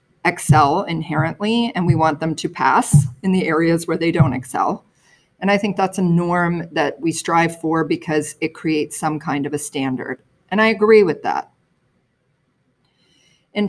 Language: English